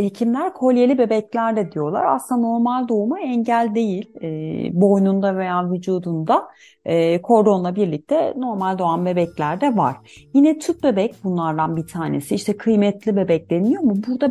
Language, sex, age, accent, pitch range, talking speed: Turkish, female, 40-59, native, 180-255 Hz, 145 wpm